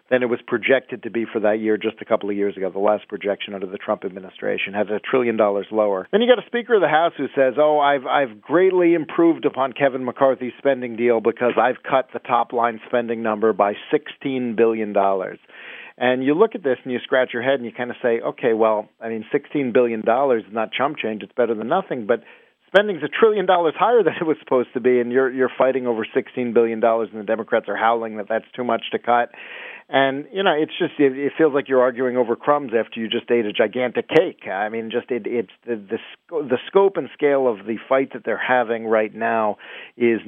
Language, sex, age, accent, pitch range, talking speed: English, male, 40-59, American, 110-135 Hz, 240 wpm